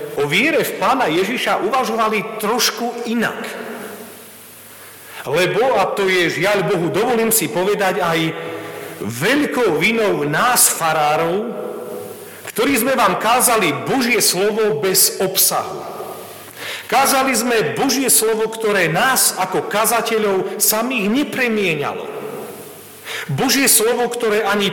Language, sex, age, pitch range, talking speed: Slovak, male, 40-59, 190-240 Hz, 105 wpm